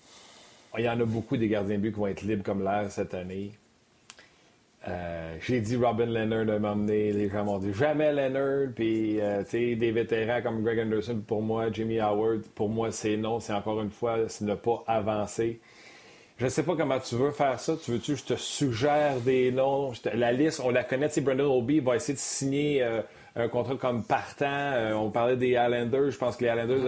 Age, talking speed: 30-49, 225 wpm